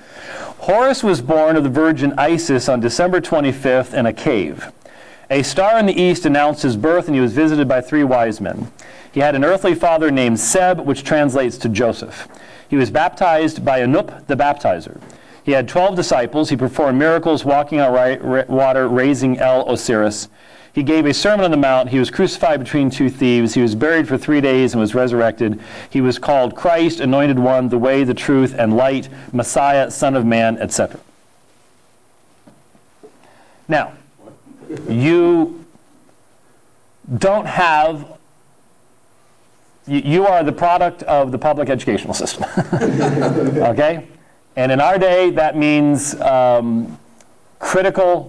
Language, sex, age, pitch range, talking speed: English, male, 40-59, 130-160 Hz, 150 wpm